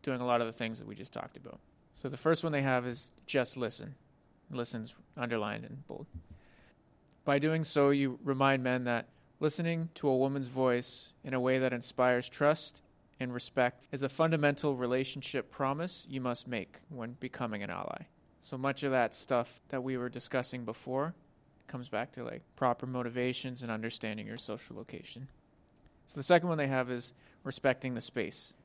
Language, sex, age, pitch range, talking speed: English, male, 30-49, 120-140 Hz, 180 wpm